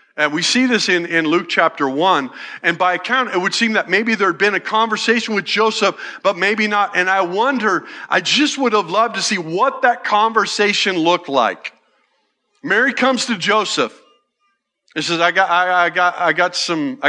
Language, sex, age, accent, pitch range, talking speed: English, male, 50-69, American, 170-225 Hz, 195 wpm